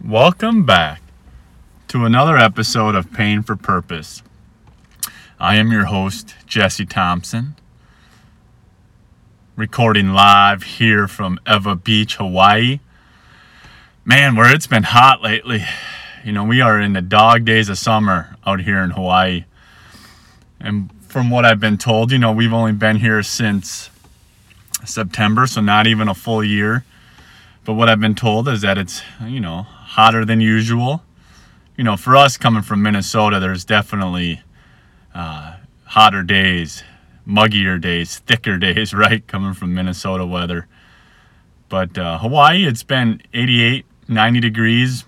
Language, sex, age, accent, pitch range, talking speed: English, male, 30-49, American, 95-115 Hz, 140 wpm